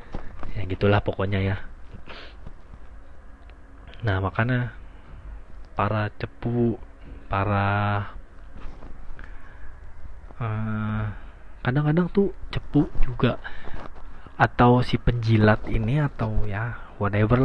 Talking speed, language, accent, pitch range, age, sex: 75 wpm, Indonesian, native, 100-130 Hz, 20-39, male